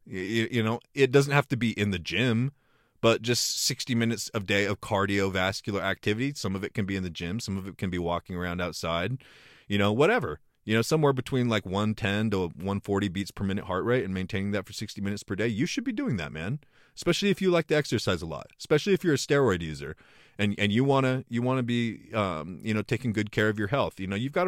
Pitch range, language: 100-135 Hz, English